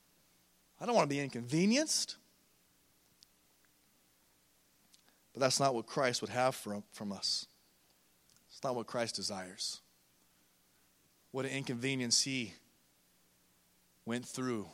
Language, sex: English, male